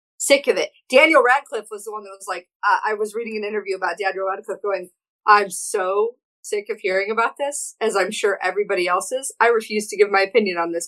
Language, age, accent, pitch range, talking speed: English, 40-59, American, 180-260 Hz, 230 wpm